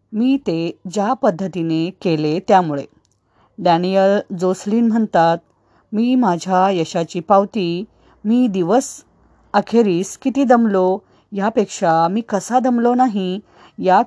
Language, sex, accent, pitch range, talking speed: Marathi, female, native, 175-230 Hz, 100 wpm